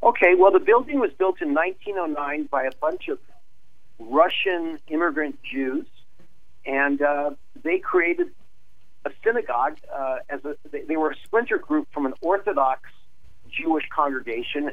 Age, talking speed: 50-69, 140 wpm